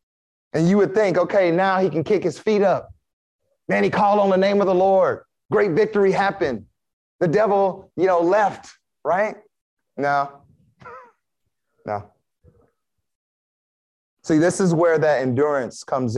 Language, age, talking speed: English, 30-49, 145 wpm